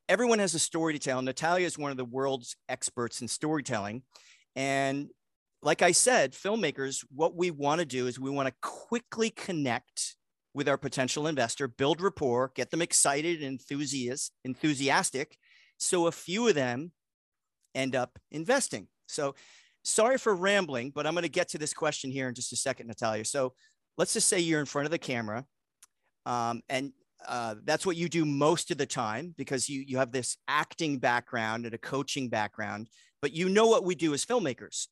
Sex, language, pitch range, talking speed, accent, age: male, English, 125-170 Hz, 185 wpm, American, 40-59